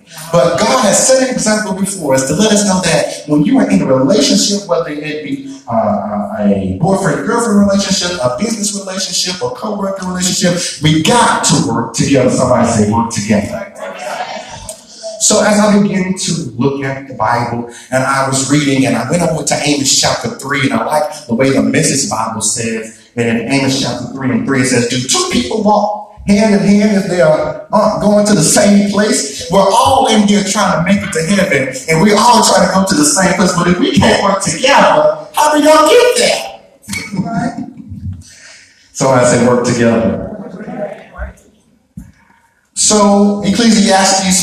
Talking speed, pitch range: 180 wpm, 140-205 Hz